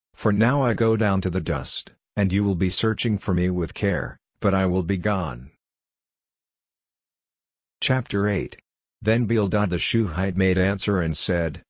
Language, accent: English, American